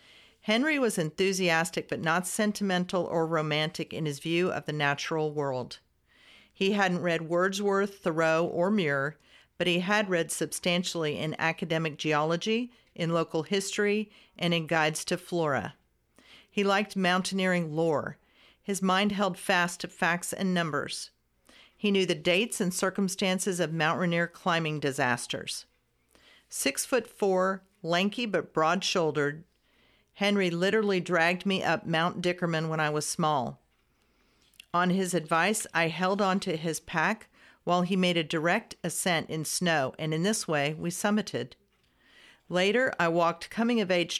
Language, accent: English, American